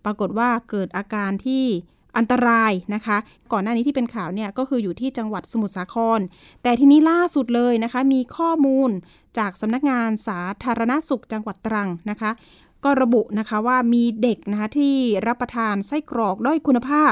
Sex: female